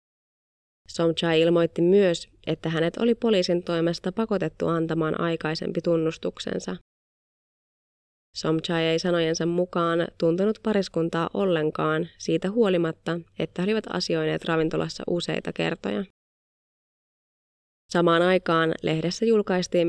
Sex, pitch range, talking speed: female, 160-180 Hz, 95 wpm